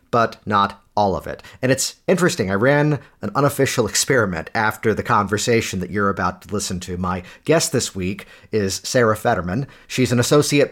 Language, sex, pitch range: English, male, 105-140 Hz